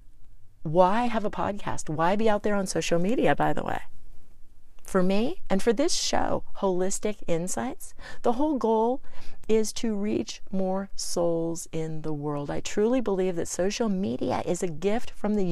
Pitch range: 155-215 Hz